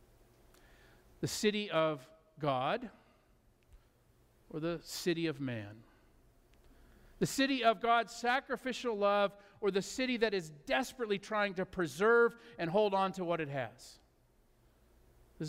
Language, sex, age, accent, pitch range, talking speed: English, male, 50-69, American, 130-190 Hz, 125 wpm